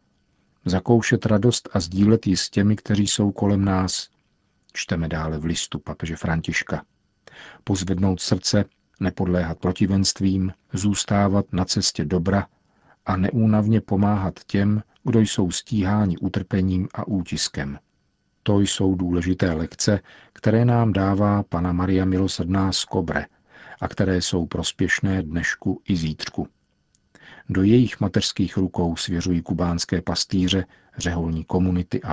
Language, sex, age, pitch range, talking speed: Czech, male, 50-69, 90-100 Hz, 120 wpm